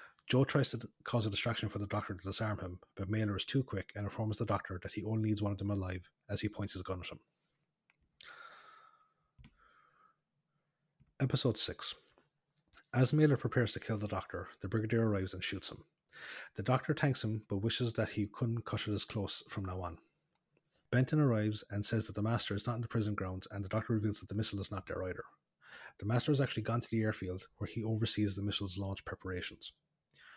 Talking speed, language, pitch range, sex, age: 210 wpm, English, 100-120 Hz, male, 30-49